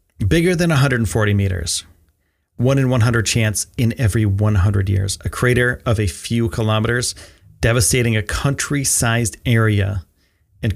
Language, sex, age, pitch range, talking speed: English, male, 30-49, 95-125 Hz, 130 wpm